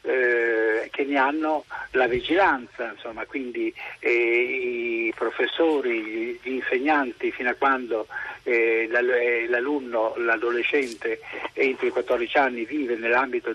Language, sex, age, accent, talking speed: Italian, male, 50-69, native, 105 wpm